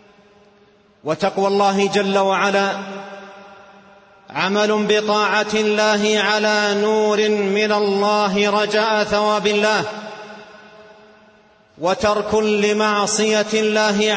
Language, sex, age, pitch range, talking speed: Arabic, male, 40-59, 205-225 Hz, 70 wpm